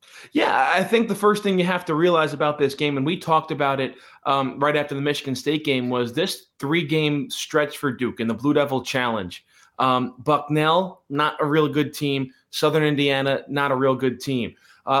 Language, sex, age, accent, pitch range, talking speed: English, male, 20-39, American, 135-160 Hz, 205 wpm